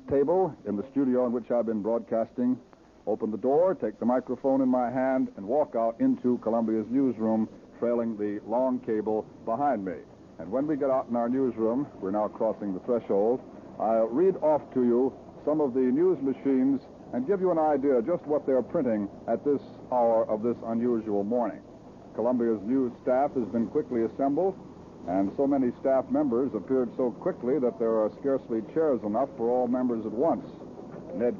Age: 60-79